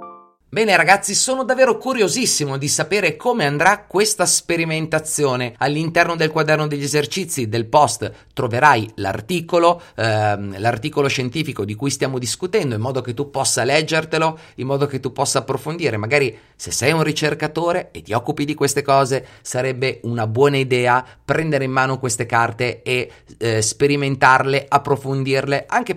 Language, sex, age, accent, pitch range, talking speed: Italian, male, 30-49, native, 120-150 Hz, 150 wpm